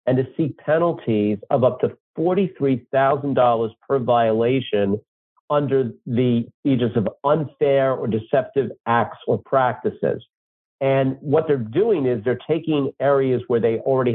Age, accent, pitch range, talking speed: 50-69, American, 115-140 Hz, 130 wpm